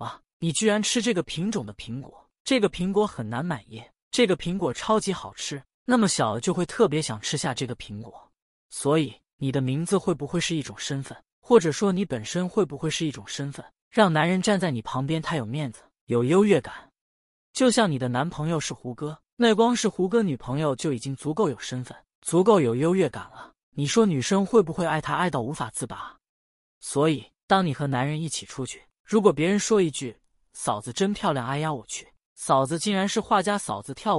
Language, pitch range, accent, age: Chinese, 135-195 Hz, native, 20-39